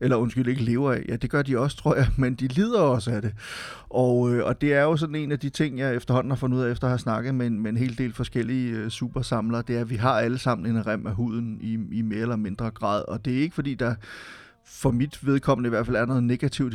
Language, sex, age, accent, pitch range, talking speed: Danish, male, 30-49, native, 115-130 Hz, 275 wpm